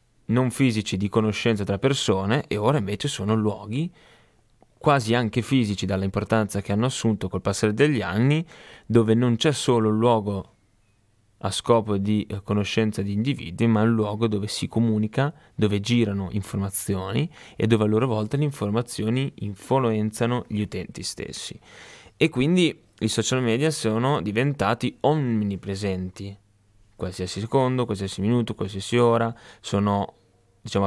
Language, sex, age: Italian, male, 20-39